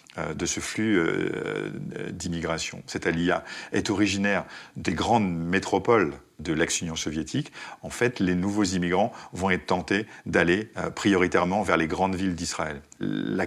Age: 50-69